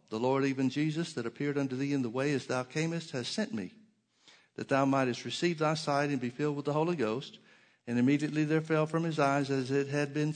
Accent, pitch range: American, 125-155 Hz